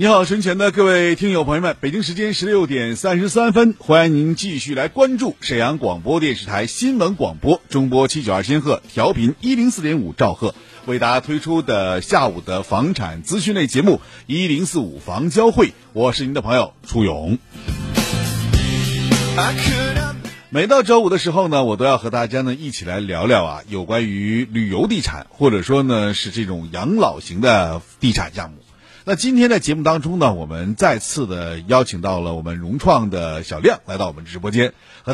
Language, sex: Chinese, male